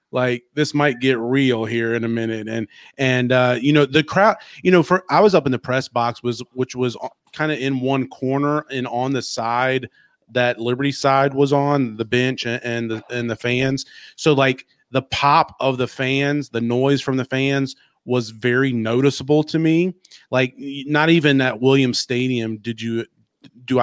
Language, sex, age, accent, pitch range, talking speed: English, male, 30-49, American, 120-135 Hz, 190 wpm